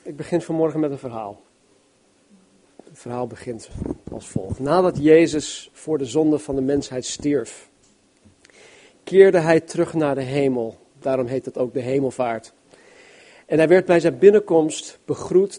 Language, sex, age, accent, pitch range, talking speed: Dutch, male, 40-59, Dutch, 140-175 Hz, 150 wpm